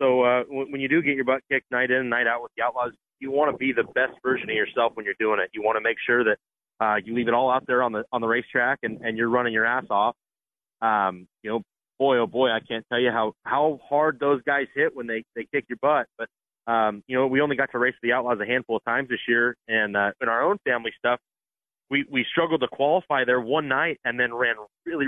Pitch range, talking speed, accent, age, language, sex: 115-135 Hz, 270 wpm, American, 30-49, English, male